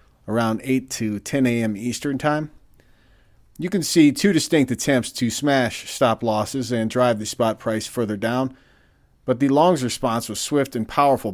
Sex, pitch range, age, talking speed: male, 110-140 Hz, 40-59, 170 wpm